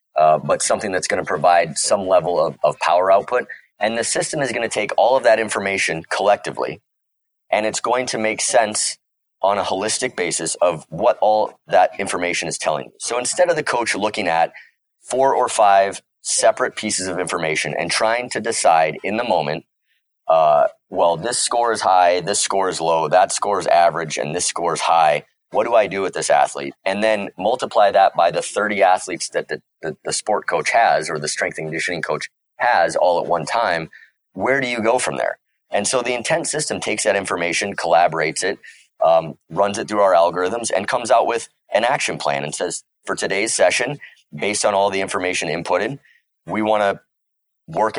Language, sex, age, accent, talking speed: English, male, 30-49, American, 200 wpm